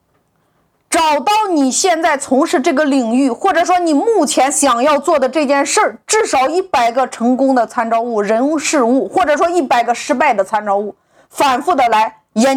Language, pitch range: Chinese, 265-380 Hz